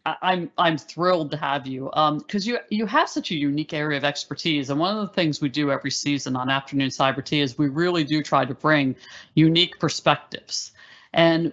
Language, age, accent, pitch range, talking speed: English, 50-69, American, 145-185 Hz, 210 wpm